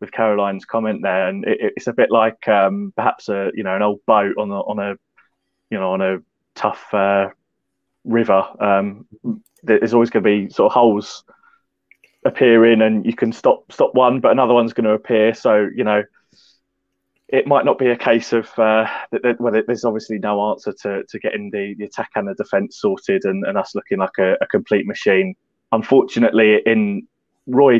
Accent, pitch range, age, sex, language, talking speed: British, 100-120 Hz, 20-39, male, English, 200 wpm